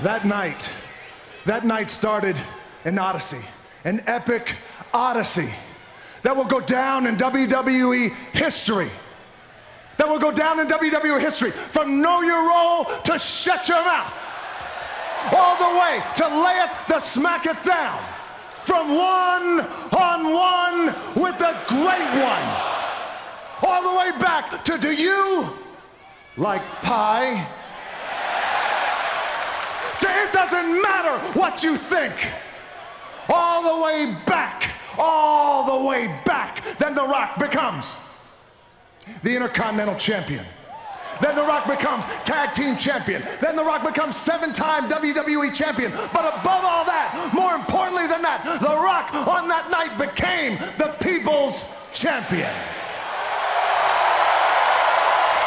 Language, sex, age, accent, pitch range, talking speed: English, male, 40-59, American, 265-350 Hz, 120 wpm